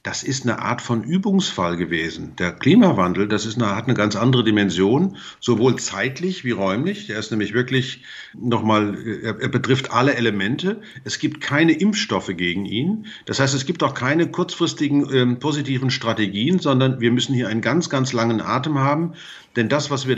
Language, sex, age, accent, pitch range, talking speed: German, male, 50-69, German, 115-145 Hz, 180 wpm